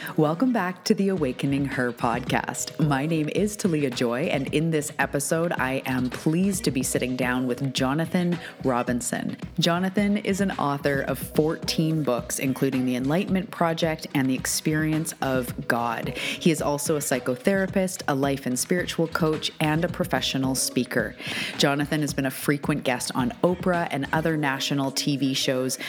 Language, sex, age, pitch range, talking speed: English, female, 30-49, 130-160 Hz, 160 wpm